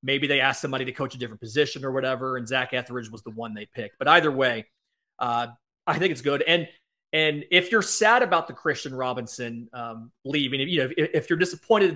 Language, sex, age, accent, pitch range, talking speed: English, male, 30-49, American, 125-175 Hz, 215 wpm